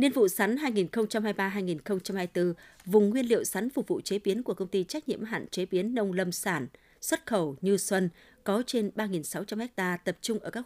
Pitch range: 180-220 Hz